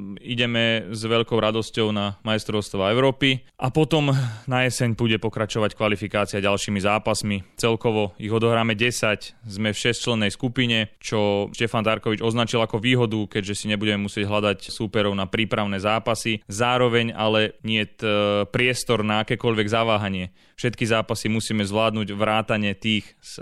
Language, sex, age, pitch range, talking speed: Slovak, male, 20-39, 105-115 Hz, 140 wpm